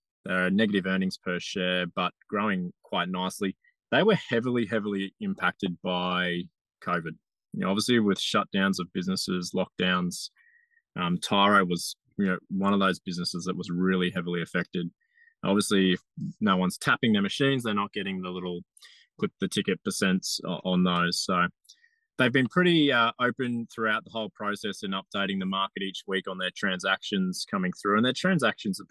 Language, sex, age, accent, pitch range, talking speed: English, male, 20-39, Australian, 95-150 Hz, 170 wpm